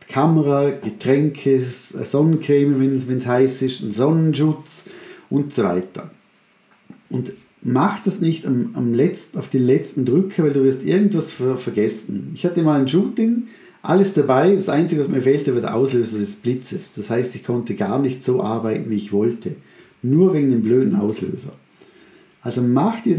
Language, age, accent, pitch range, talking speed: German, 50-69, German, 125-175 Hz, 165 wpm